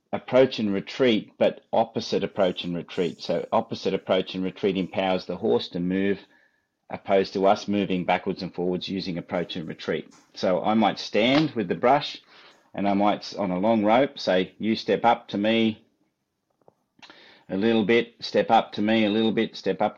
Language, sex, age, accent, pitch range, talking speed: English, male, 30-49, Australian, 95-110 Hz, 185 wpm